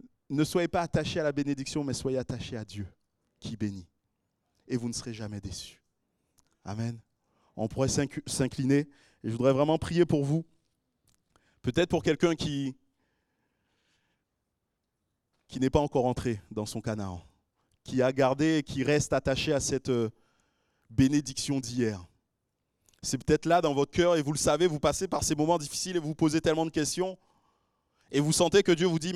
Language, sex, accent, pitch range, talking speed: French, male, French, 115-155 Hz, 170 wpm